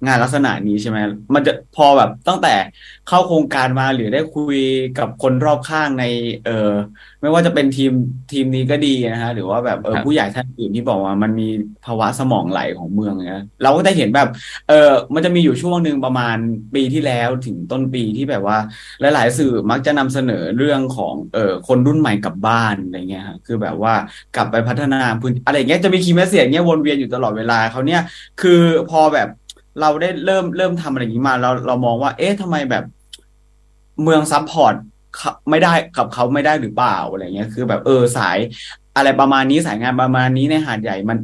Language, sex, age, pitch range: English, male, 20-39, 115-150 Hz